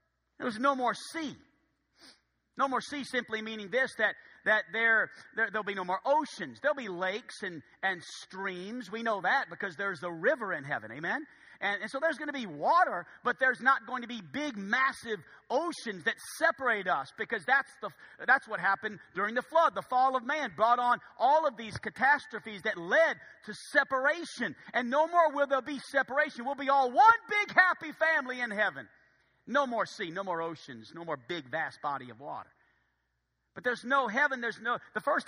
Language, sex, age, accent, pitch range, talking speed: English, male, 50-69, American, 210-280 Hz, 195 wpm